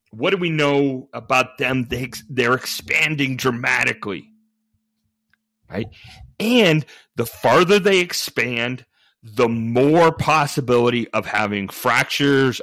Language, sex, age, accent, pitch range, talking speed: English, male, 40-59, American, 110-145 Hz, 100 wpm